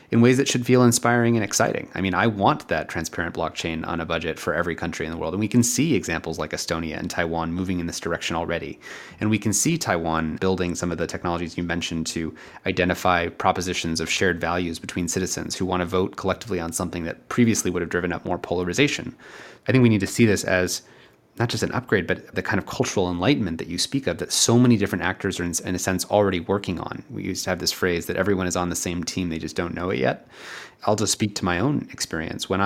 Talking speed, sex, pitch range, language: 245 wpm, male, 85-105 Hz, English